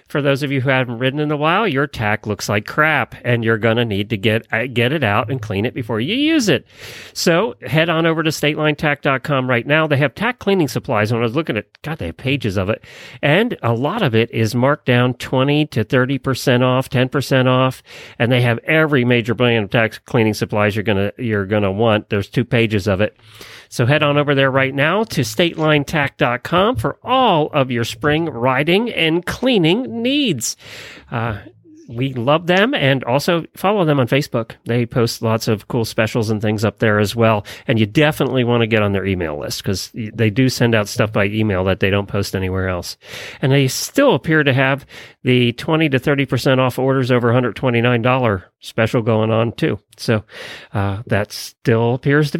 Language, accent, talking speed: English, American, 205 wpm